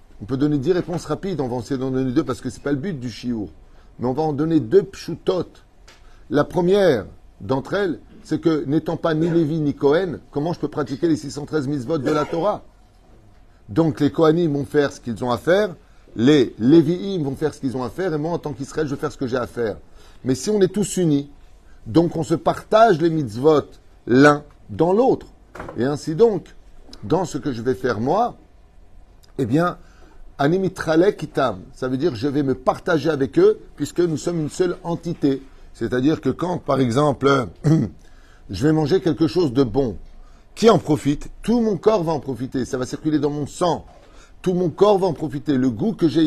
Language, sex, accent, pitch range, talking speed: French, male, French, 130-170 Hz, 210 wpm